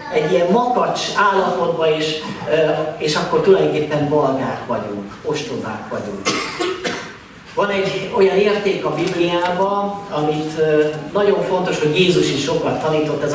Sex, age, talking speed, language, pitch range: male, 40-59, 120 wpm, Hungarian, 150-200 Hz